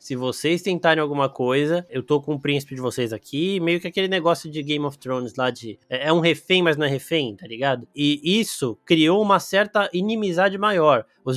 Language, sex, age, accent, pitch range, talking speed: Portuguese, male, 20-39, Brazilian, 140-180 Hz, 210 wpm